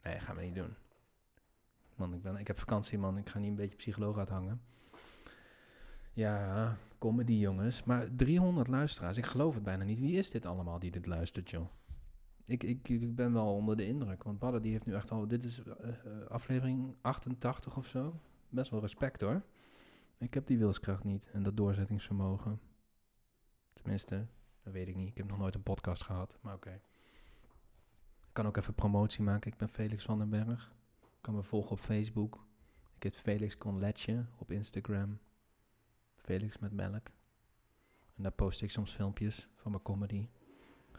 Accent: Dutch